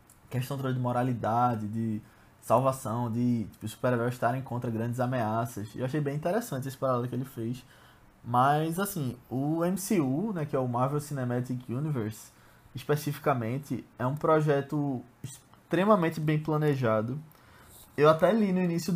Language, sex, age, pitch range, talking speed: Portuguese, male, 20-39, 120-155 Hz, 145 wpm